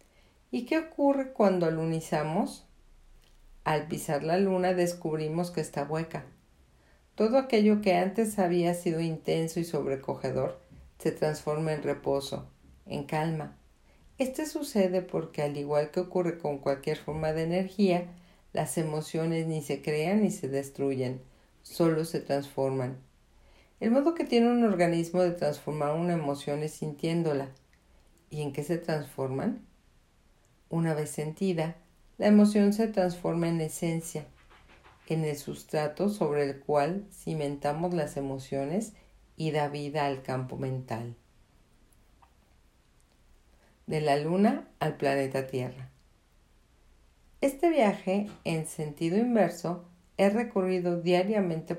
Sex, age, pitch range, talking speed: female, 50-69, 145-185 Hz, 125 wpm